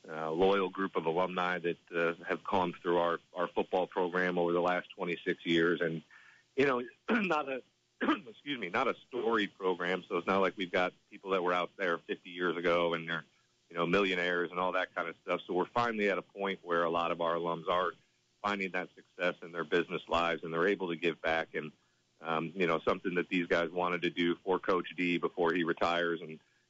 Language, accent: English, American